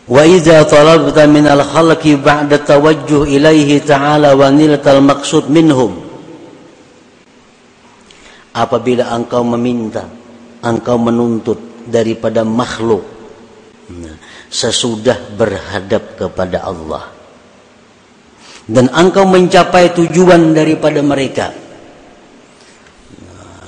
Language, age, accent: Indonesian, 50-69, native